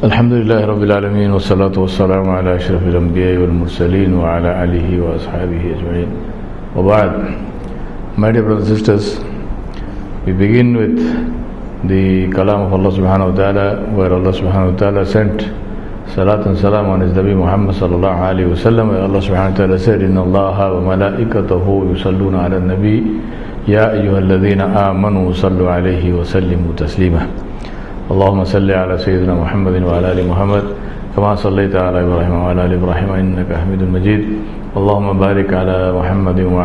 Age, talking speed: 50-69, 135 wpm